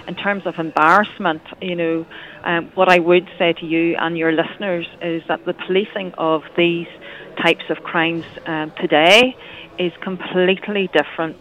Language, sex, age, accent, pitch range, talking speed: English, female, 40-59, Irish, 165-185 Hz, 160 wpm